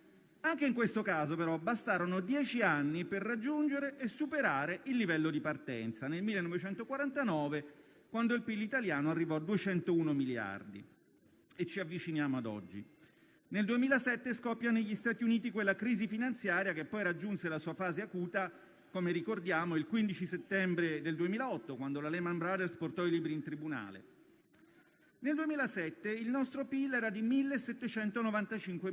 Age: 40-59